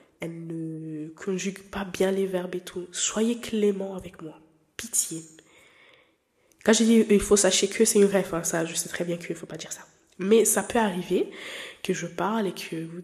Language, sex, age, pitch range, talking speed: French, female, 20-39, 180-230 Hz, 210 wpm